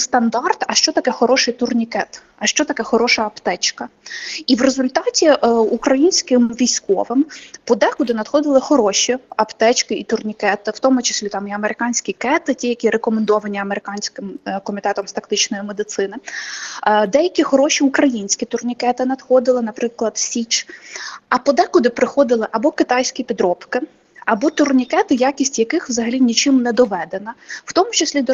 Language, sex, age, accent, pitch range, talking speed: Ukrainian, female, 20-39, native, 230-290 Hz, 135 wpm